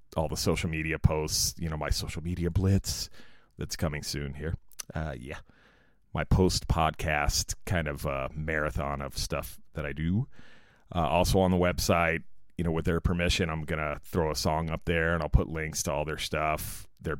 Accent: American